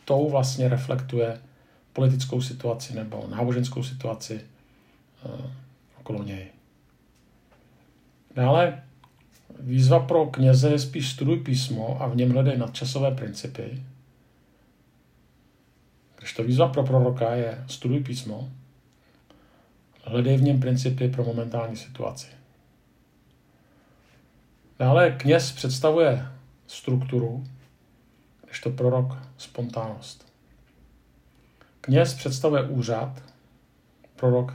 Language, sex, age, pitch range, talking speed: Czech, male, 50-69, 120-135 Hz, 90 wpm